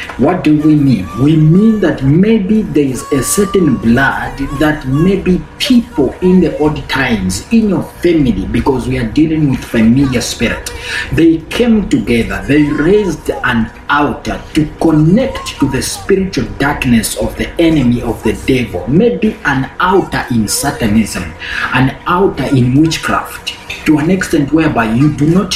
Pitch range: 120-165 Hz